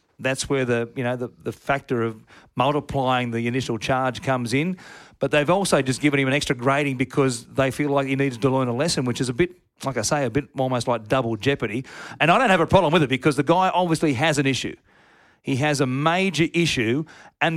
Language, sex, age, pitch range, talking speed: English, male, 40-59, 135-180 Hz, 230 wpm